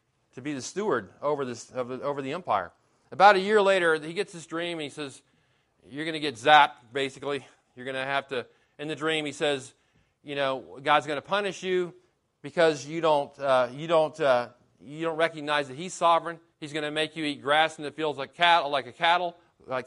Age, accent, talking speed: 40-59, American, 215 wpm